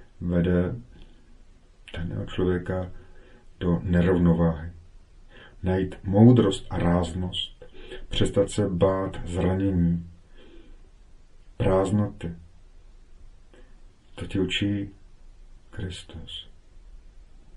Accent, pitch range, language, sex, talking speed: native, 85-105 Hz, Czech, male, 60 wpm